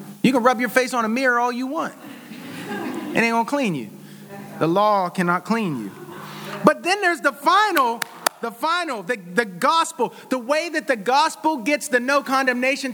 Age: 30-49